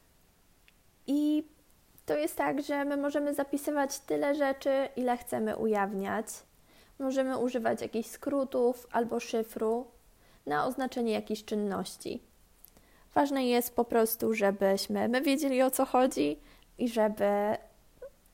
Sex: female